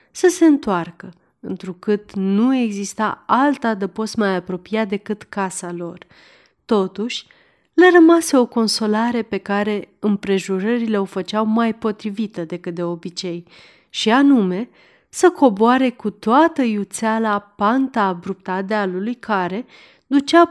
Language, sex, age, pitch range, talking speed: Romanian, female, 30-49, 190-245 Hz, 115 wpm